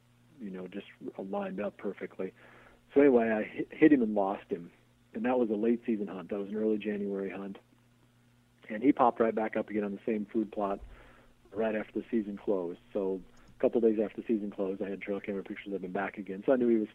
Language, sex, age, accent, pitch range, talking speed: English, male, 40-59, American, 100-115 Hz, 235 wpm